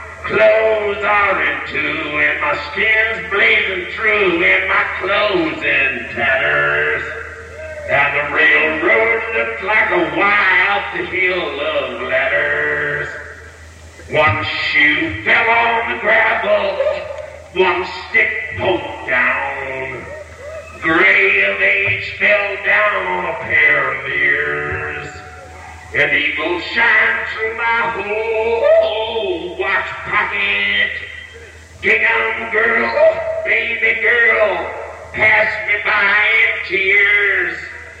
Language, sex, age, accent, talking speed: English, male, 50-69, American, 100 wpm